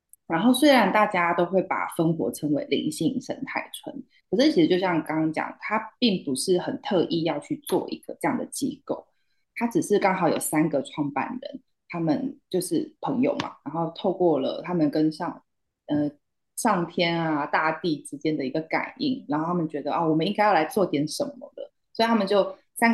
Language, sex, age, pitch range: Chinese, female, 20-39, 160-225 Hz